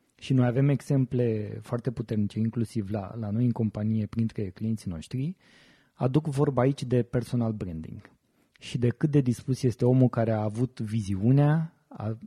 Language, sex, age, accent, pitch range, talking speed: Romanian, male, 20-39, native, 115-140 Hz, 160 wpm